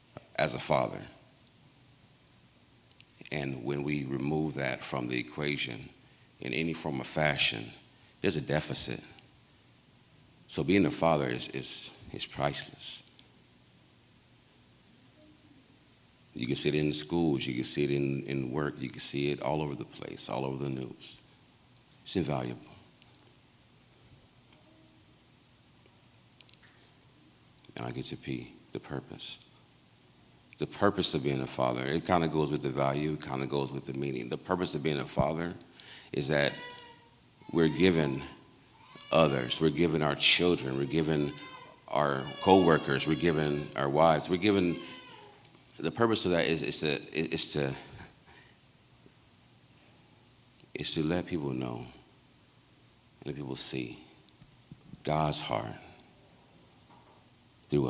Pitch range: 65-80 Hz